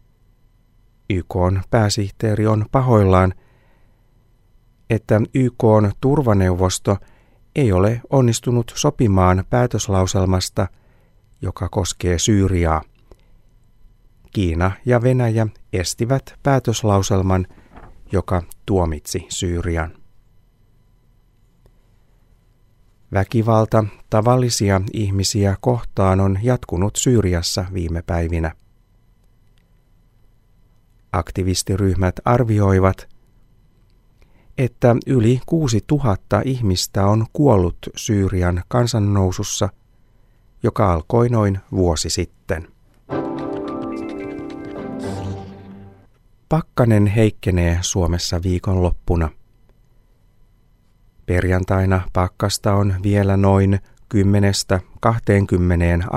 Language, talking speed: Finnish, 60 wpm